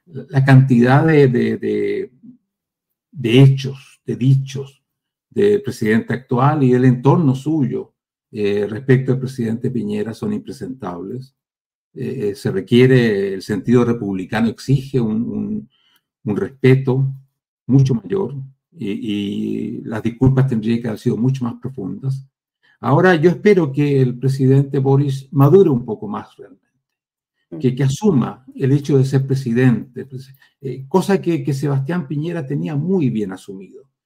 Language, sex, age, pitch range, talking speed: Spanish, male, 50-69, 125-150 Hz, 135 wpm